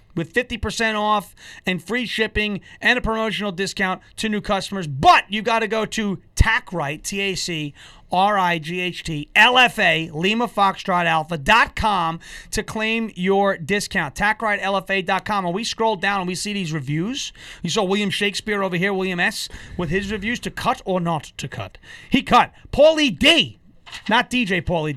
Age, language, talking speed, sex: 30-49, English, 180 wpm, male